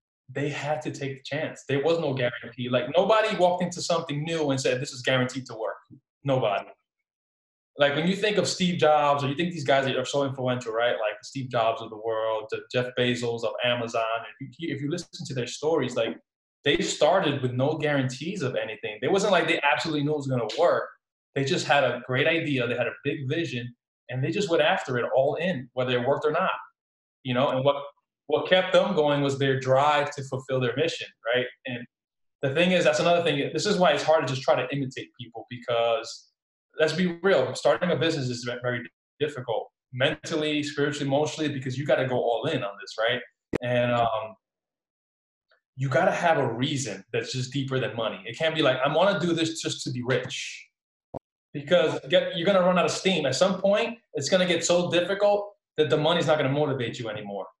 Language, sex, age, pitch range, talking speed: English, male, 20-39, 125-160 Hz, 220 wpm